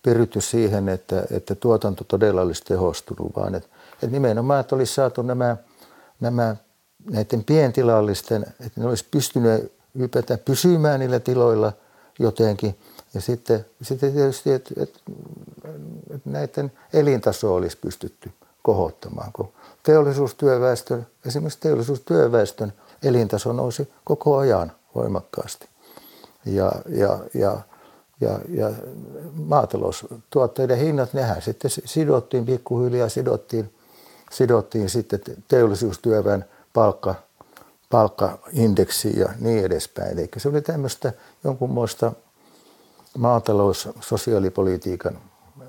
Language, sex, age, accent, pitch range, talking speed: Finnish, male, 60-79, native, 105-130 Hz, 100 wpm